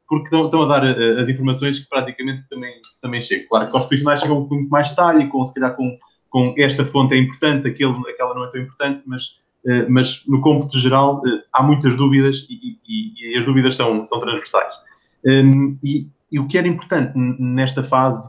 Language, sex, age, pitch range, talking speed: Portuguese, male, 20-39, 120-140 Hz, 190 wpm